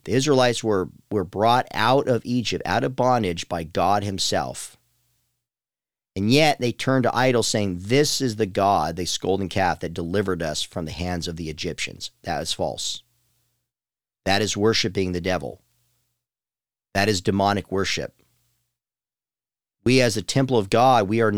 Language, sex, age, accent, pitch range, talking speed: English, male, 40-59, American, 100-125 Hz, 160 wpm